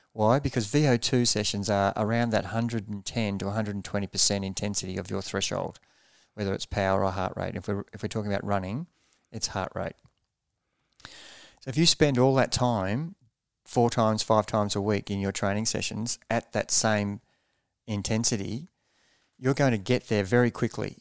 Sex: male